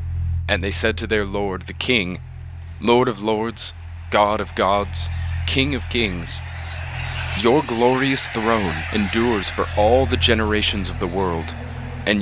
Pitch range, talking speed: 85-105 Hz, 140 wpm